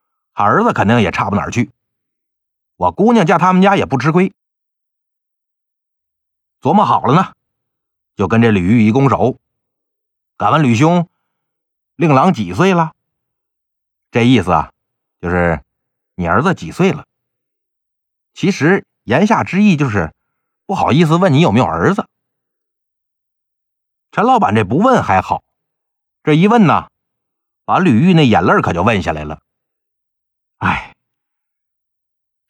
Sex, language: male, Chinese